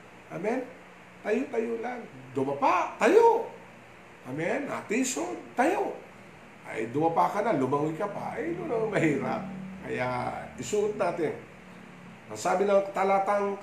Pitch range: 130-195 Hz